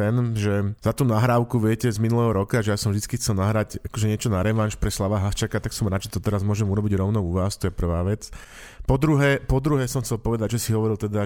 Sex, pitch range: male, 100-115 Hz